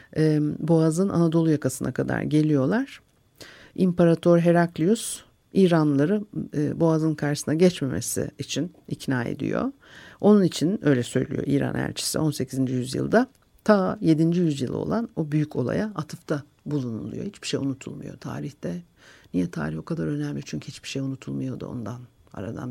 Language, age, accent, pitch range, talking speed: Turkish, 60-79, native, 135-175 Hz, 120 wpm